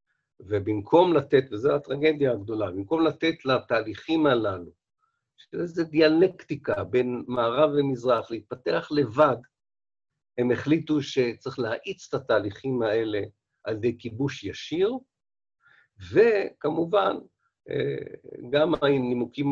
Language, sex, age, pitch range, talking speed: Hebrew, male, 50-69, 105-140 Hz, 95 wpm